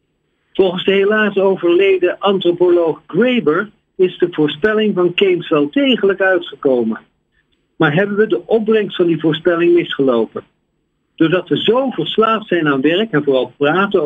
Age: 50-69